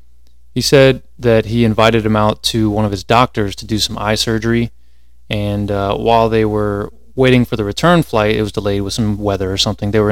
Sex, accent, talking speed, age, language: male, American, 220 wpm, 20-39, English